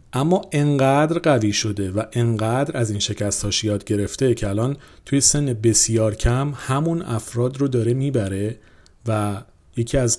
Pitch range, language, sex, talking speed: 105-130 Hz, Persian, male, 145 wpm